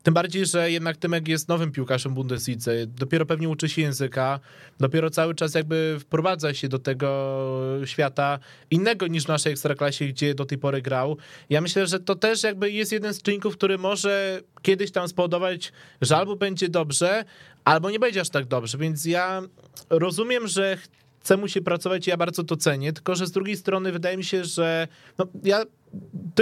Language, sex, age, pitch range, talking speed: Polish, male, 20-39, 140-185 Hz, 190 wpm